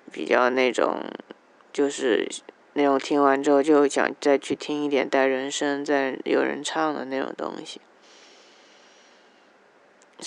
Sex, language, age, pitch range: female, Chinese, 20-39, 135-150 Hz